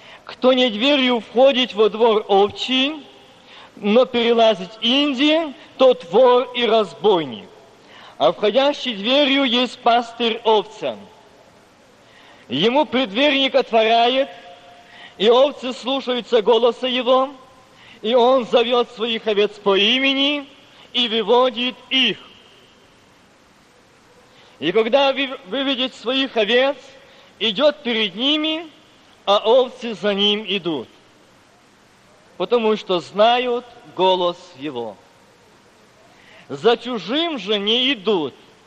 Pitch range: 210-260 Hz